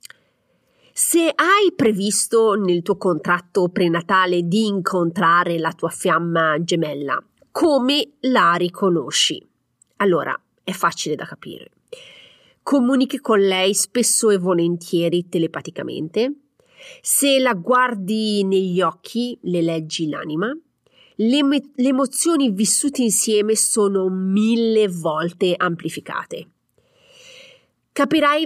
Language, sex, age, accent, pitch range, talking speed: Italian, female, 30-49, native, 175-250 Hz, 95 wpm